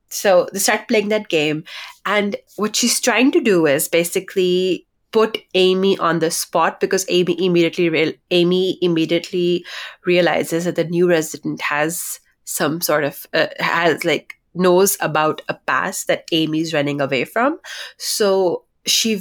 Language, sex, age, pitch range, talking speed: English, female, 20-39, 165-195 Hz, 145 wpm